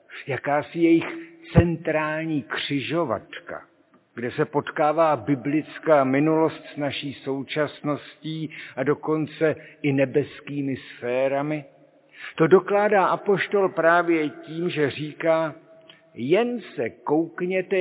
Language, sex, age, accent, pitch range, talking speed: Czech, male, 60-79, native, 135-160 Hz, 90 wpm